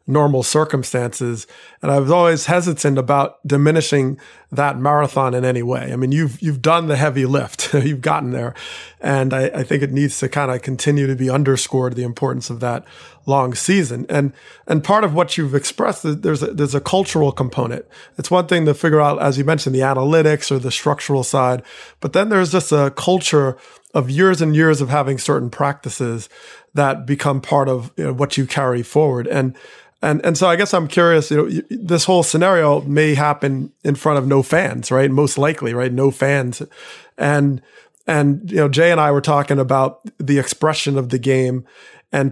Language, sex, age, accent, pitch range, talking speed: English, male, 30-49, American, 135-155 Hz, 195 wpm